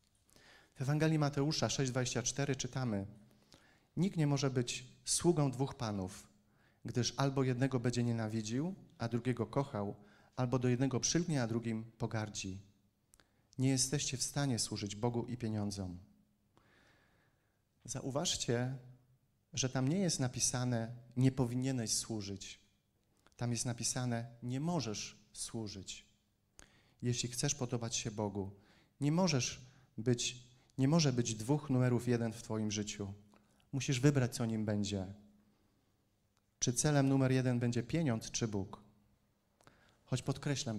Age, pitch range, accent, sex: 40-59, 105-130 Hz, native, male